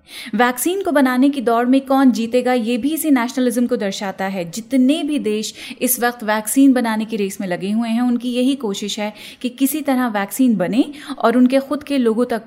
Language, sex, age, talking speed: Hindi, female, 30-49, 210 wpm